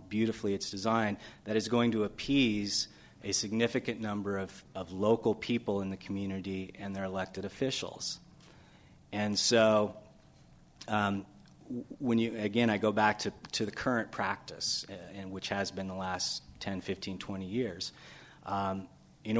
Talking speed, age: 150 wpm, 30-49